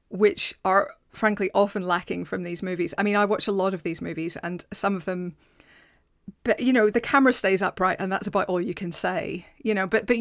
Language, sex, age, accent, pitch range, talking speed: English, female, 30-49, British, 185-215 Hz, 230 wpm